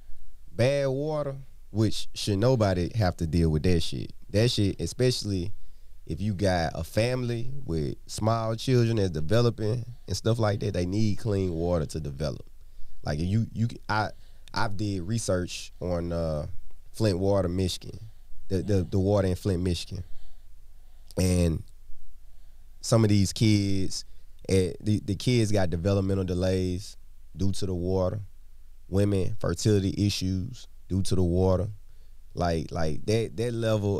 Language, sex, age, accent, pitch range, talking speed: English, male, 20-39, American, 90-110 Hz, 145 wpm